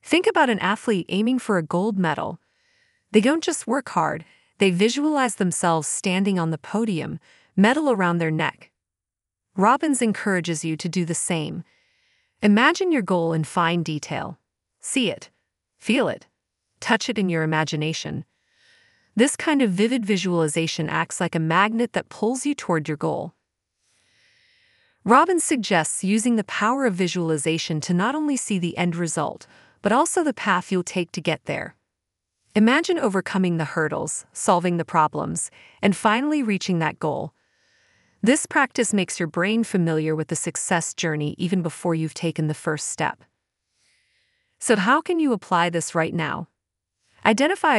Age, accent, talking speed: 30-49, American, 155 wpm